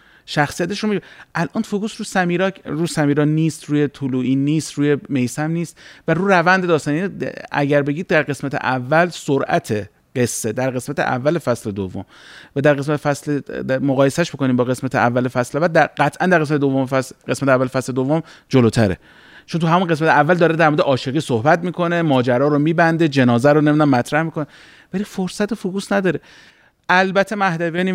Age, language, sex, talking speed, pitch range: 30-49, Persian, male, 170 wpm, 120-160 Hz